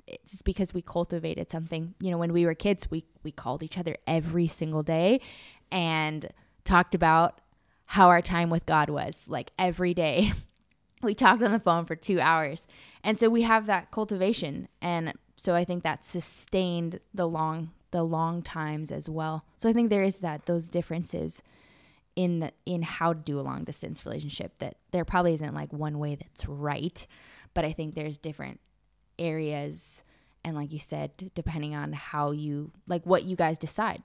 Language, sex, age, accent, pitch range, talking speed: English, female, 20-39, American, 155-180 Hz, 185 wpm